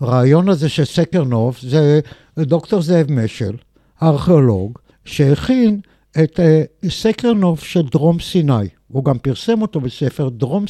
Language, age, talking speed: Hebrew, 60-79, 120 wpm